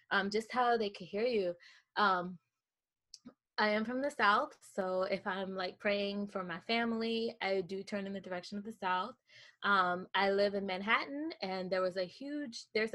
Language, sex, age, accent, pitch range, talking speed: English, female, 20-39, American, 185-220 Hz, 190 wpm